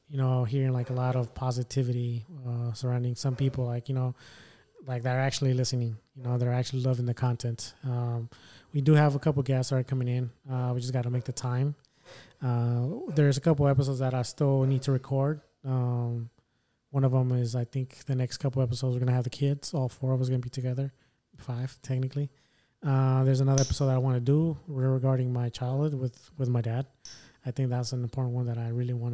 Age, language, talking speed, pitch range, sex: 20-39, English, 220 wpm, 125-135 Hz, male